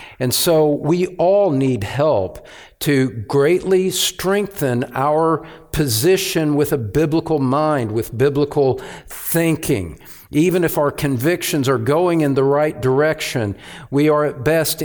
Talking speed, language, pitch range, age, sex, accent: 130 wpm, English, 130-160 Hz, 50-69, male, American